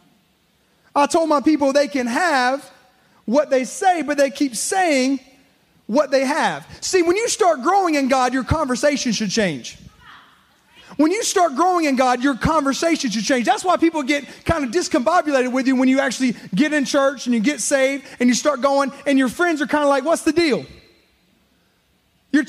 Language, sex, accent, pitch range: English, male, American, 260-325 Hz